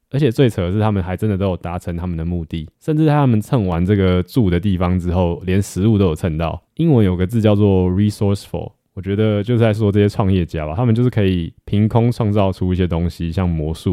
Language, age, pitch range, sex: Chinese, 20-39, 90-115 Hz, male